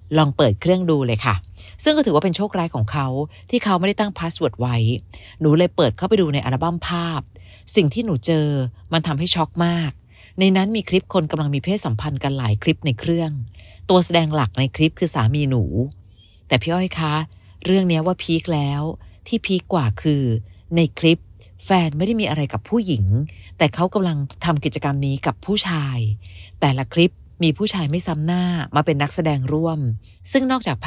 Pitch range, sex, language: 125-175 Hz, female, Thai